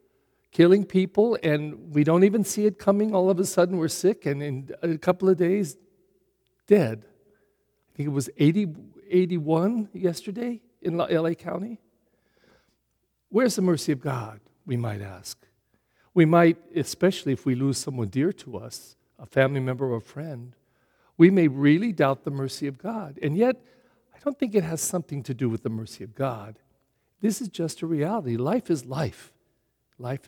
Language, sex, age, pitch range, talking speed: English, male, 60-79, 135-195 Hz, 170 wpm